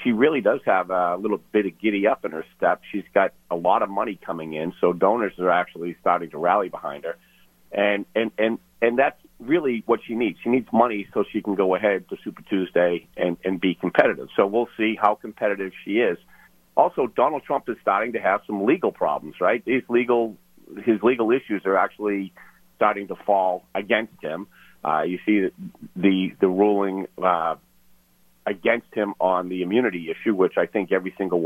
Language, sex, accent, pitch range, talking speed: English, male, American, 90-115 Hz, 195 wpm